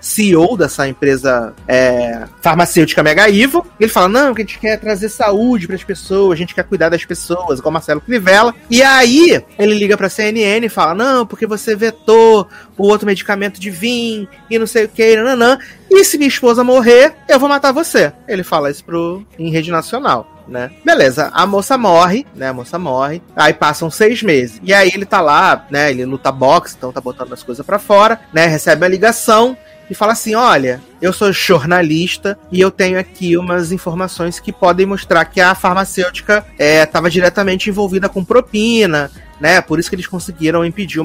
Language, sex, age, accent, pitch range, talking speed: Portuguese, male, 30-49, Brazilian, 160-225 Hz, 195 wpm